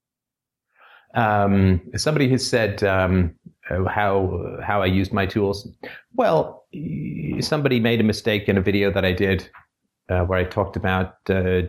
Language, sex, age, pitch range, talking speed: English, male, 30-49, 95-110 Hz, 145 wpm